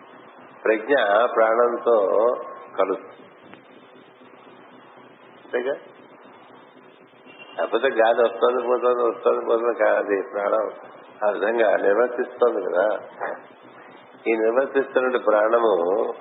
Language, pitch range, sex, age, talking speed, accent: Telugu, 105-125 Hz, male, 50-69, 65 wpm, native